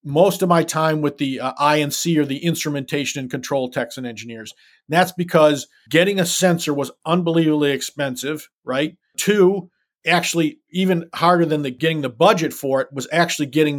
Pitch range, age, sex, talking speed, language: 145-180 Hz, 50-69, male, 175 wpm, English